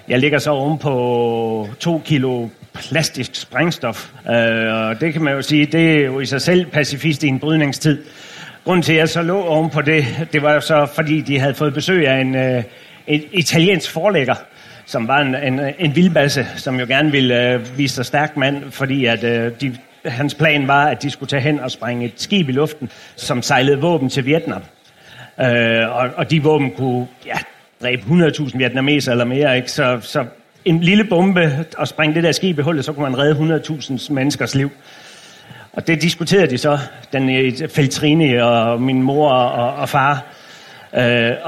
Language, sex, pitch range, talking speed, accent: Danish, male, 130-155 Hz, 195 wpm, native